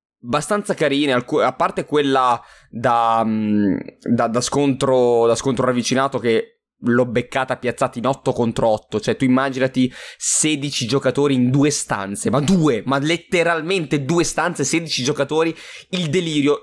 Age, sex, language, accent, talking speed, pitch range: 20-39, male, Italian, native, 135 wpm, 120-170 Hz